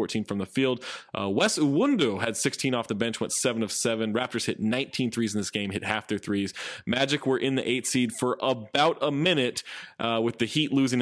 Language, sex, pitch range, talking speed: English, male, 110-135 Hz, 230 wpm